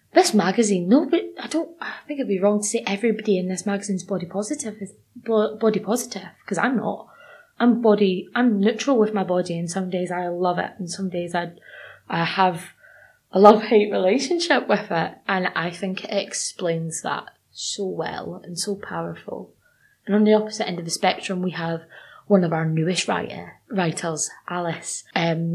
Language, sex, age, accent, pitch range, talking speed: English, female, 20-39, British, 170-205 Hz, 185 wpm